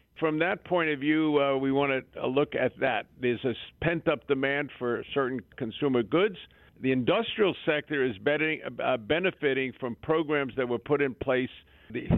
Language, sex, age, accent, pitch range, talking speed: English, male, 50-69, American, 120-150 Hz, 175 wpm